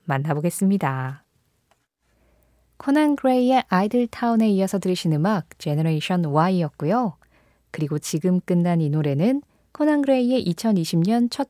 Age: 20-39